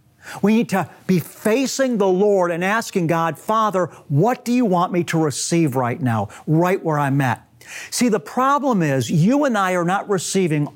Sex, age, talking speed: male, 50-69, 190 wpm